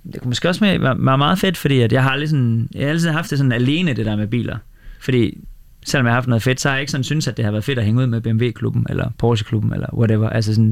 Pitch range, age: 115-135 Hz, 20-39